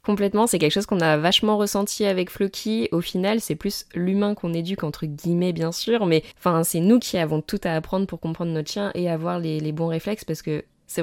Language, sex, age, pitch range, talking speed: French, female, 20-39, 155-195 Hz, 230 wpm